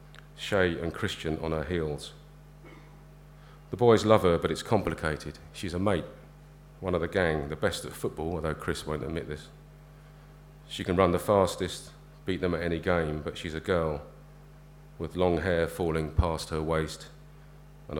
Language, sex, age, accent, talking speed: English, male, 40-59, British, 170 wpm